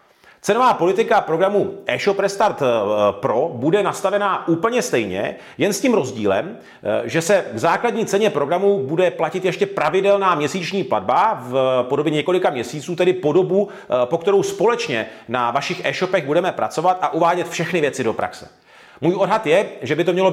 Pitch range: 150-195 Hz